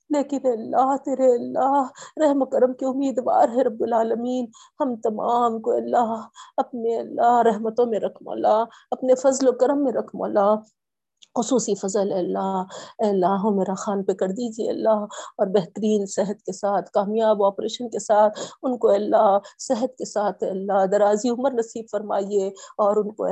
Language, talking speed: Urdu, 160 wpm